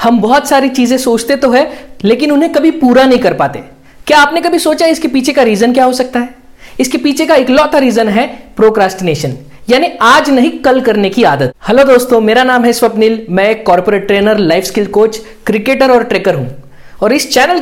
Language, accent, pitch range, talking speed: Hindi, native, 220-295 Hz, 205 wpm